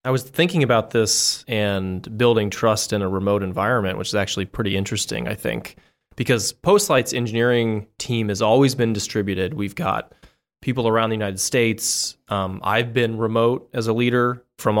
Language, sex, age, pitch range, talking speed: English, male, 20-39, 105-125 Hz, 170 wpm